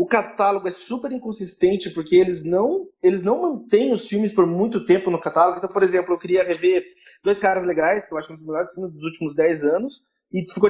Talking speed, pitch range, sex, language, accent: 225 wpm, 175-240 Hz, male, Portuguese, Brazilian